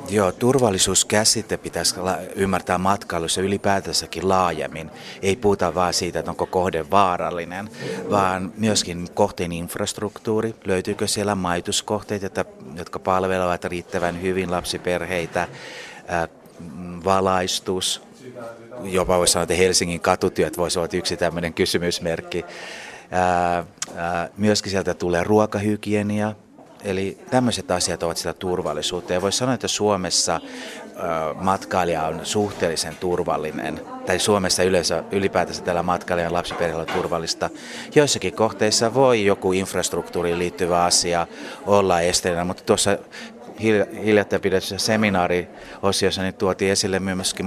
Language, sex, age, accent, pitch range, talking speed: Finnish, male, 30-49, native, 90-105 Hz, 105 wpm